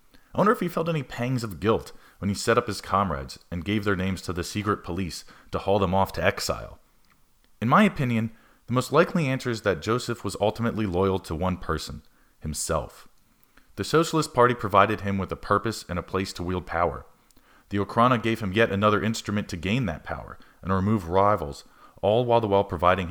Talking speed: 205 wpm